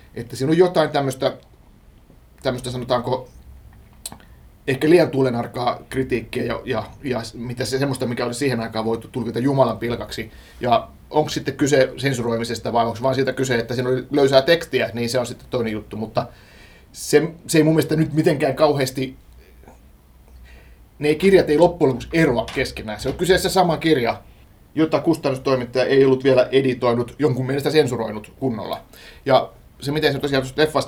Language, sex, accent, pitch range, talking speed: Finnish, male, native, 115-140 Hz, 155 wpm